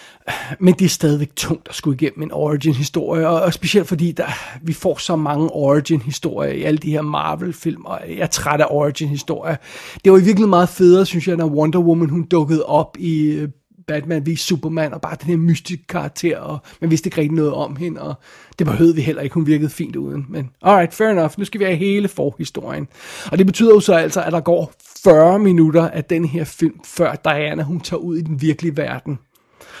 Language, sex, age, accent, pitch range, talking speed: Danish, male, 30-49, native, 150-175 Hz, 210 wpm